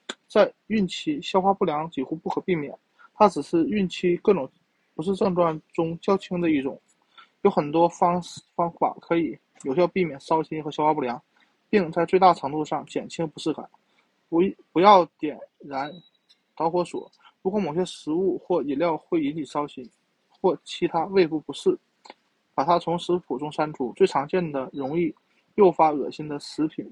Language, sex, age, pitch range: Chinese, male, 20-39, 155-190 Hz